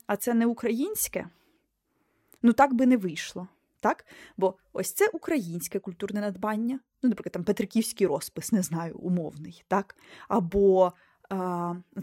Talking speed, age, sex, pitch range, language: 135 wpm, 20-39, female, 190-240 Hz, Ukrainian